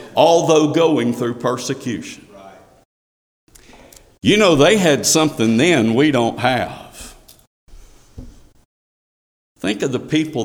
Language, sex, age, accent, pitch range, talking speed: English, male, 50-69, American, 115-145 Hz, 100 wpm